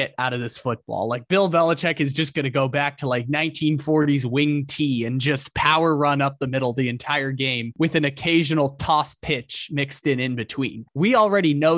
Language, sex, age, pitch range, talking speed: English, male, 20-39, 130-160 Hz, 210 wpm